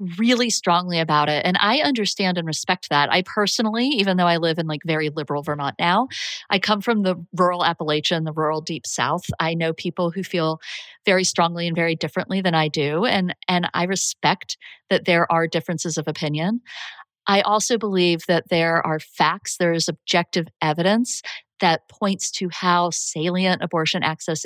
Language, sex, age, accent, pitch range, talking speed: English, female, 30-49, American, 160-200 Hz, 180 wpm